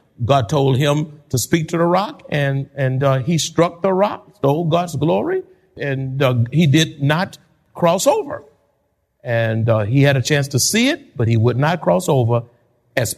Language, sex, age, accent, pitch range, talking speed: English, male, 50-69, American, 115-185 Hz, 185 wpm